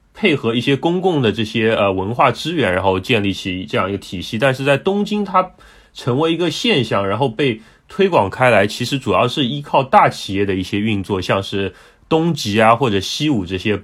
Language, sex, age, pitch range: Chinese, male, 30-49, 100-130 Hz